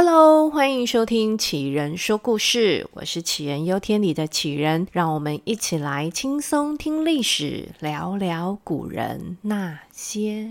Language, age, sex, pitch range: Chinese, 30-49, female, 160-245 Hz